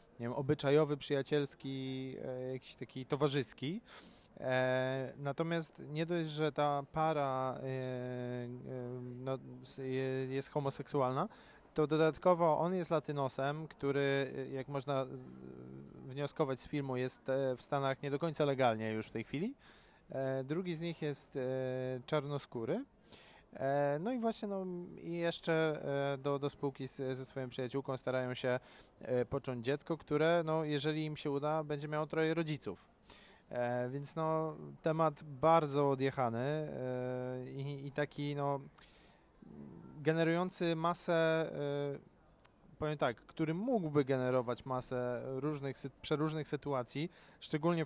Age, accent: 20-39, native